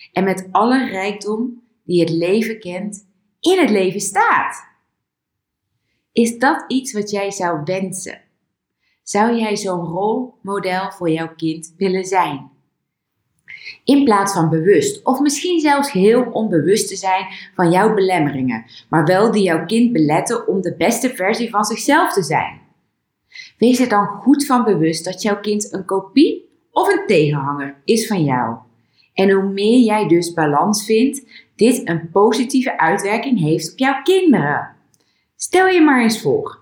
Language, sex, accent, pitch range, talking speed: Dutch, female, Dutch, 180-245 Hz, 150 wpm